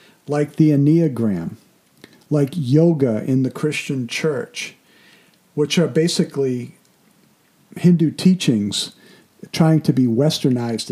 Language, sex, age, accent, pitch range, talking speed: English, male, 50-69, American, 115-155 Hz, 100 wpm